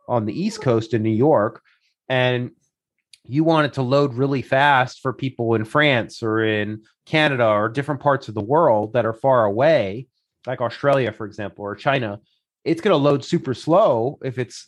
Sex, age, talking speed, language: male, 30-49, 190 wpm, English